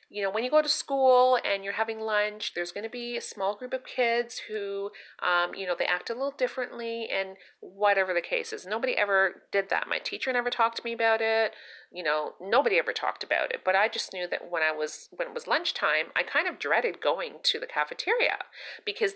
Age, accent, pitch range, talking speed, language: 40-59, American, 190-305 Hz, 230 wpm, English